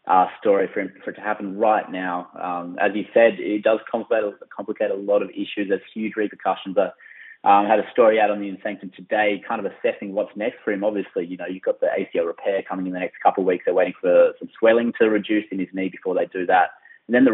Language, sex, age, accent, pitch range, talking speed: English, male, 20-39, Australian, 95-110 Hz, 260 wpm